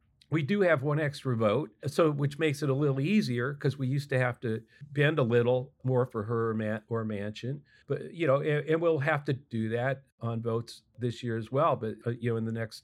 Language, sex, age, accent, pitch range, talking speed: English, male, 50-69, American, 115-140 Hz, 240 wpm